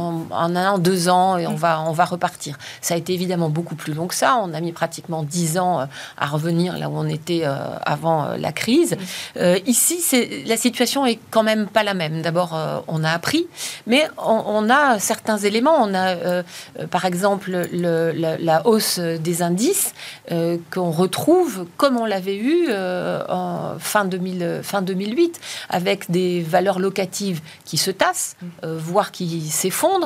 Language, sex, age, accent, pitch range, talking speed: French, female, 40-59, French, 170-215 Hz, 180 wpm